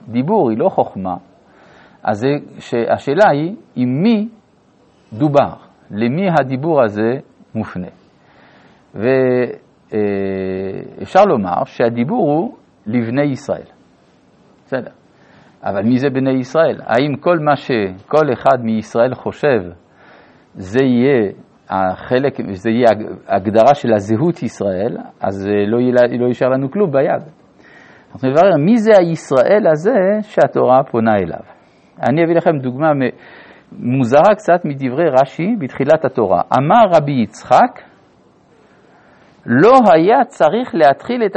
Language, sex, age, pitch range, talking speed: Hebrew, male, 50-69, 115-170 Hz, 105 wpm